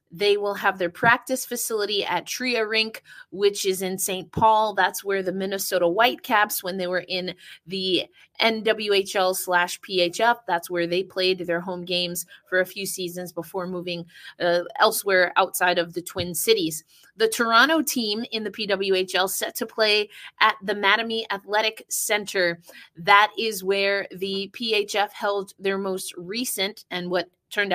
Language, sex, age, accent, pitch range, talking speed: English, female, 30-49, American, 175-210 Hz, 160 wpm